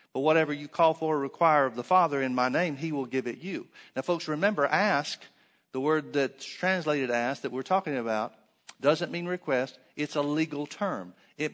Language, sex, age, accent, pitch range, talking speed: English, male, 50-69, American, 135-170 Hz, 205 wpm